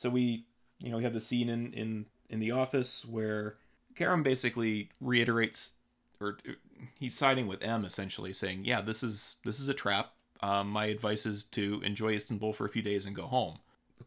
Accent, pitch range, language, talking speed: American, 100-120 Hz, English, 200 wpm